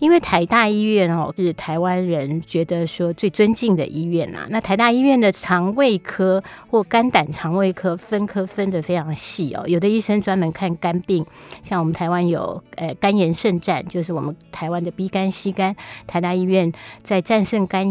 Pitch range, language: 170-205 Hz, Chinese